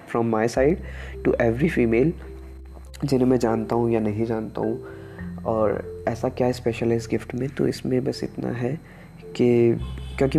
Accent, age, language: native, 20-39, Hindi